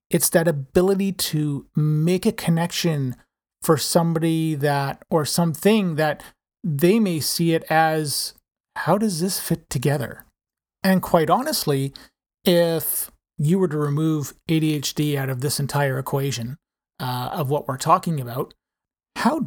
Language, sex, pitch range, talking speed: English, male, 145-180 Hz, 135 wpm